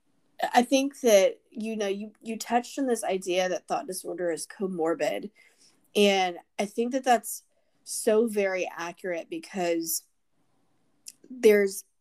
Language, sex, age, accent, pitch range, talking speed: English, female, 20-39, American, 185-230 Hz, 130 wpm